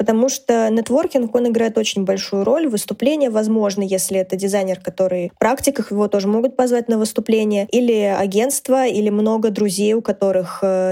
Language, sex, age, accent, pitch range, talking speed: Russian, female, 20-39, native, 195-235 Hz, 160 wpm